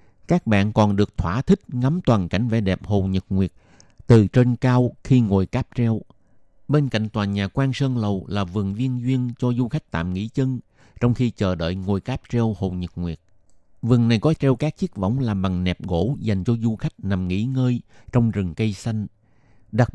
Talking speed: 215 wpm